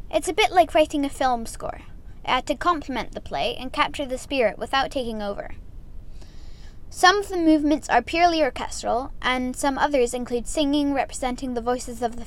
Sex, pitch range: female, 225-305 Hz